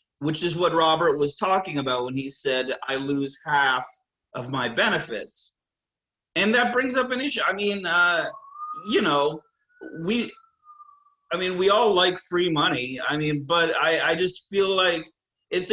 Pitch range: 140-185 Hz